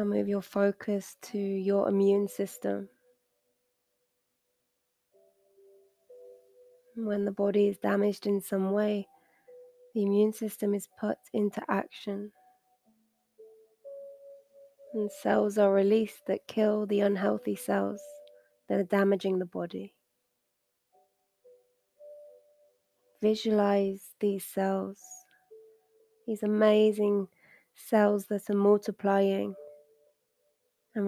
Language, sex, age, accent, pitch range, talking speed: English, female, 20-39, British, 195-295 Hz, 90 wpm